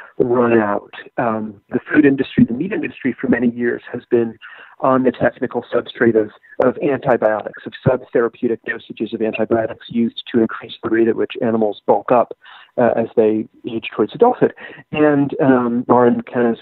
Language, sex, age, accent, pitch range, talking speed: English, male, 40-59, American, 115-140 Hz, 170 wpm